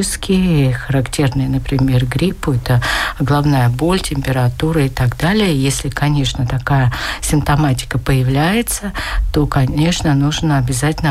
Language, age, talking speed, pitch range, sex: Russian, 60-79, 105 wpm, 135-160 Hz, female